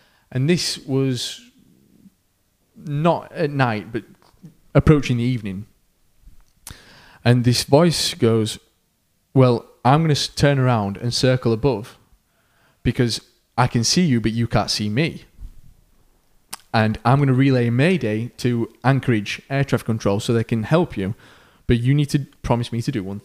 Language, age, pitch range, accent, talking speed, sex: English, 20-39, 110-140 Hz, British, 150 wpm, male